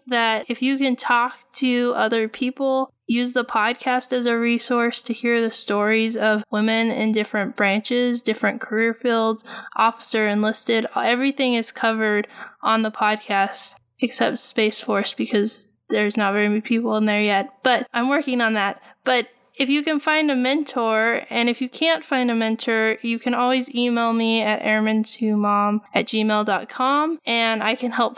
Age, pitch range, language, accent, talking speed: 10-29, 215-255 Hz, English, American, 165 wpm